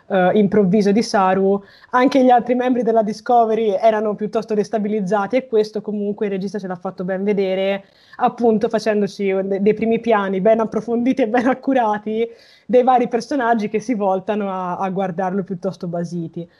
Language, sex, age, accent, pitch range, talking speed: Italian, female, 20-39, native, 195-235 Hz, 160 wpm